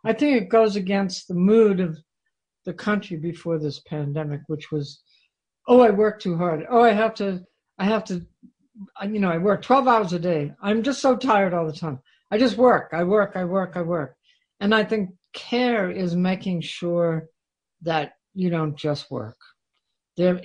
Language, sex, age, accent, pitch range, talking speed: English, female, 60-79, American, 165-200 Hz, 190 wpm